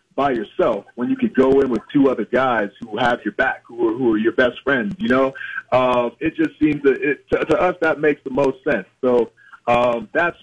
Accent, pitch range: American, 120-150 Hz